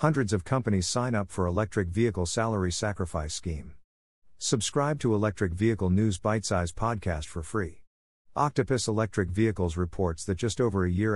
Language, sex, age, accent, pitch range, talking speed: English, male, 50-69, American, 90-110 Hz, 160 wpm